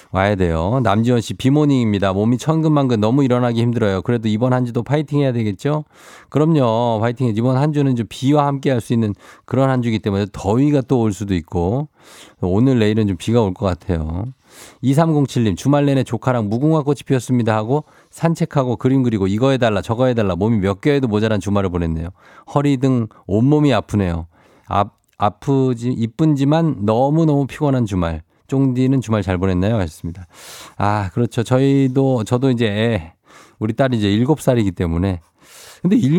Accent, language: native, Korean